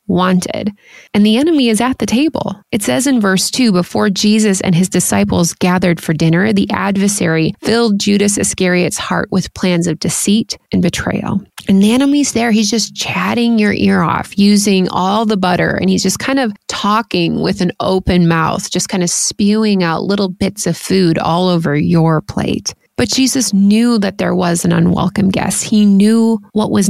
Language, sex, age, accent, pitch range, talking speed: English, female, 30-49, American, 180-220 Hz, 185 wpm